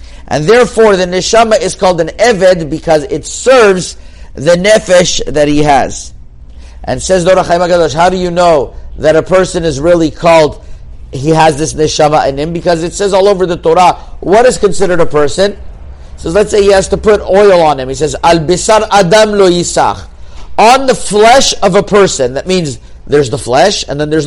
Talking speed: 195 wpm